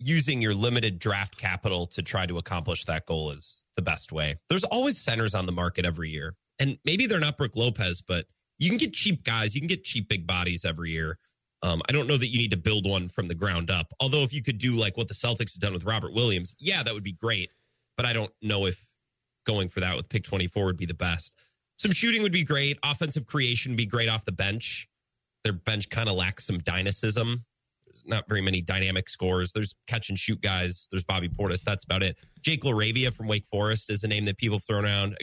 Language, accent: English, American